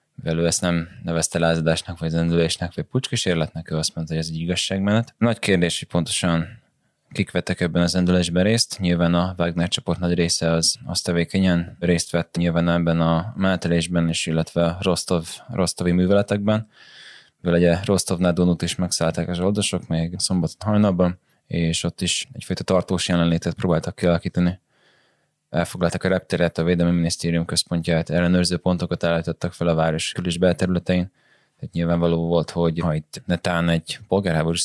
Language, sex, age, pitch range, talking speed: Hungarian, male, 20-39, 85-90 Hz, 150 wpm